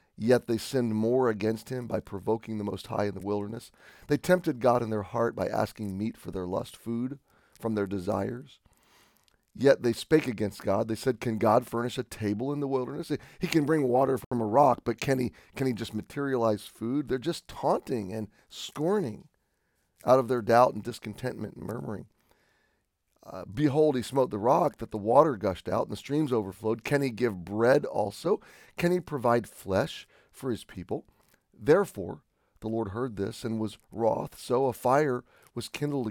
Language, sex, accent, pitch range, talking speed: English, male, American, 110-130 Hz, 185 wpm